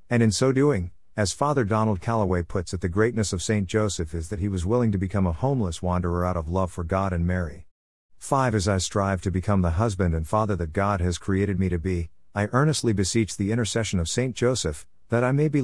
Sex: male